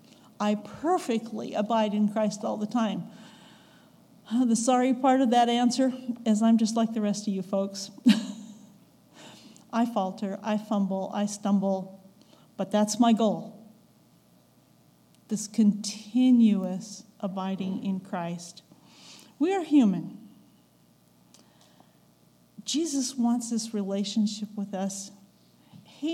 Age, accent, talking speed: 50-69, American, 110 wpm